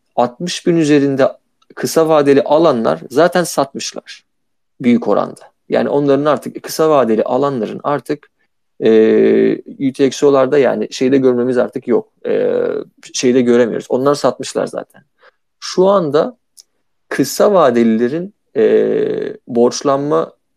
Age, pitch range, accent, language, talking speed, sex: 40-59, 125-160 Hz, native, Turkish, 105 wpm, male